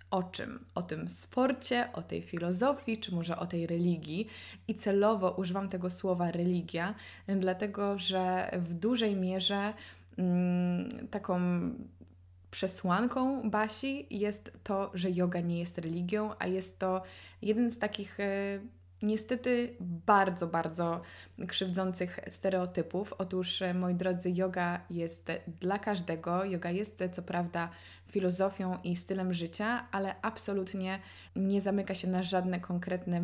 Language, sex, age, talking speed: Polish, female, 20-39, 125 wpm